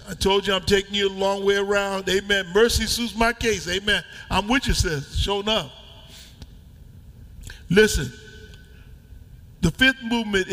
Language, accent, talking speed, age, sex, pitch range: English, American, 150 wpm, 50-69, male, 150-210 Hz